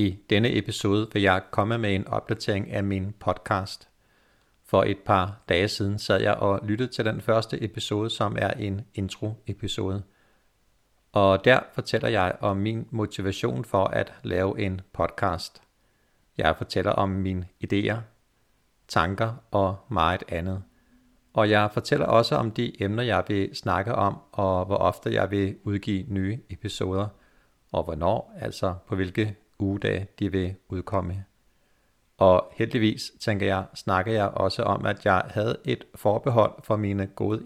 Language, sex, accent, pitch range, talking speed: Danish, male, native, 95-110 Hz, 150 wpm